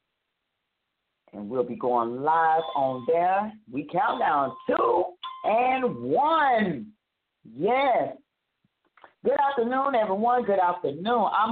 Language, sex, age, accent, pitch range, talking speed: English, female, 40-59, American, 150-195 Hz, 105 wpm